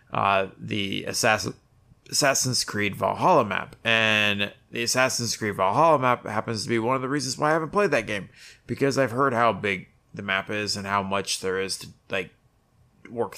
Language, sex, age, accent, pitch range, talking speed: English, male, 30-49, American, 100-125 Hz, 190 wpm